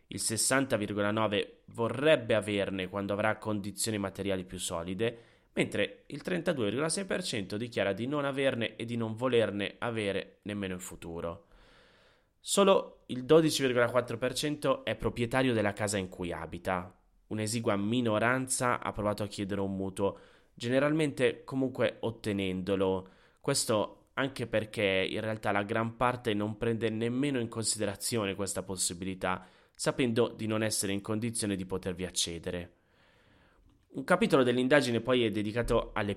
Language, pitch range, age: Italian, 95-125 Hz, 20-39